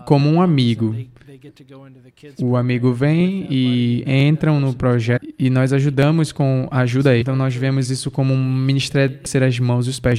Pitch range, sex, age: 125-145 Hz, male, 20-39